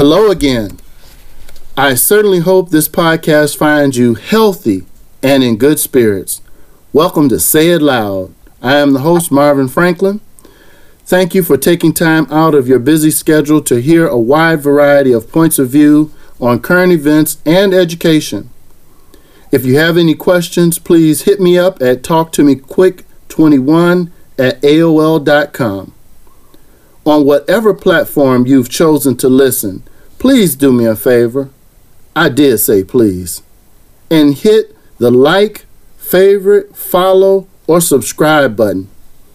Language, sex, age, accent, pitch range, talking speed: English, male, 50-69, American, 130-170 Hz, 135 wpm